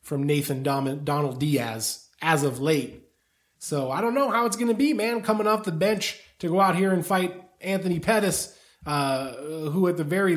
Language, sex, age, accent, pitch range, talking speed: English, male, 20-39, American, 145-185 Hz, 195 wpm